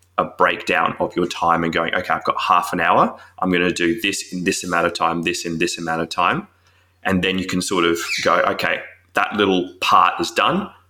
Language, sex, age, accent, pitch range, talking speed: English, male, 20-39, Australian, 85-95 Hz, 225 wpm